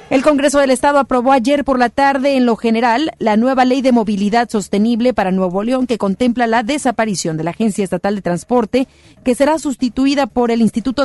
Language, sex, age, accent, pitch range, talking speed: Spanish, female, 40-59, Mexican, 200-255 Hz, 200 wpm